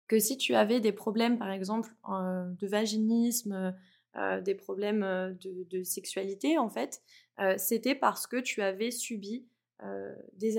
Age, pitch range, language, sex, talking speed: 20-39, 190-230 Hz, French, female, 160 wpm